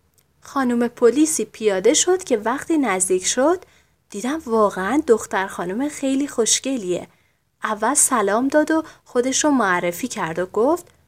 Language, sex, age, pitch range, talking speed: Persian, female, 30-49, 195-275 Hz, 125 wpm